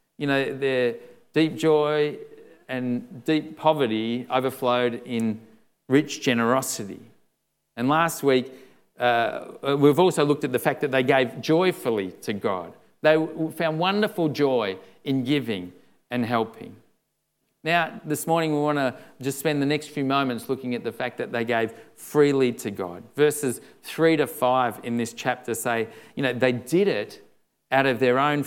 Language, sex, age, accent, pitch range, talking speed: English, male, 40-59, Australian, 125-155 Hz, 160 wpm